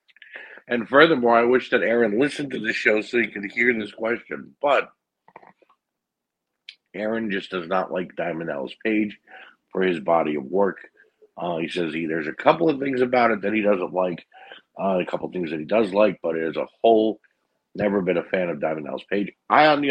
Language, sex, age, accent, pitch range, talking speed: English, male, 50-69, American, 95-120 Hz, 210 wpm